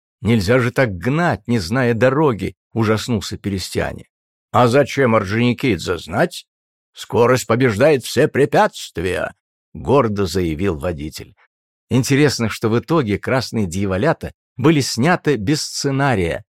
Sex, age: male, 50-69